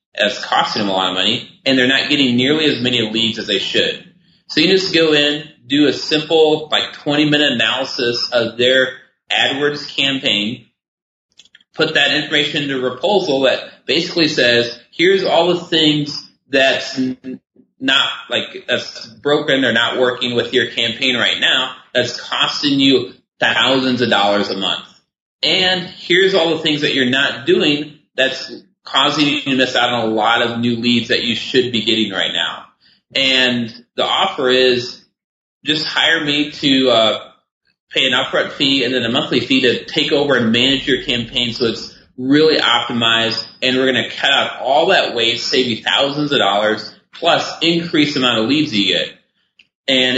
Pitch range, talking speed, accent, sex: 115-150 Hz, 175 wpm, American, male